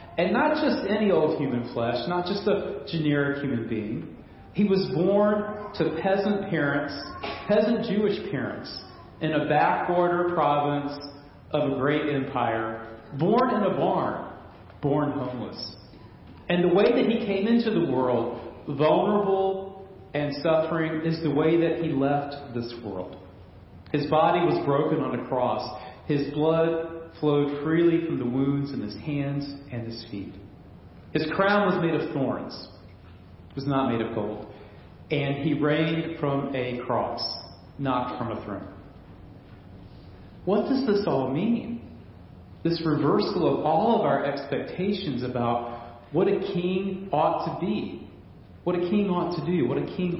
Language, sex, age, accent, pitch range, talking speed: English, male, 40-59, American, 120-175 Hz, 150 wpm